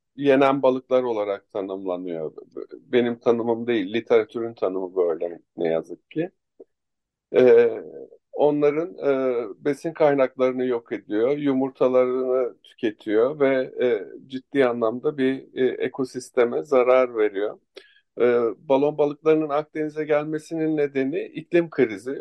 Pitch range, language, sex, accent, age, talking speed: 120-155 Hz, Turkish, male, native, 50-69, 105 wpm